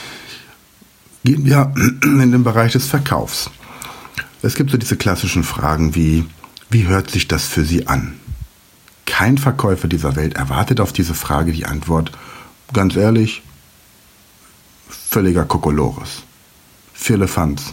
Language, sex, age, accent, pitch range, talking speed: German, male, 60-79, German, 80-115 Hz, 120 wpm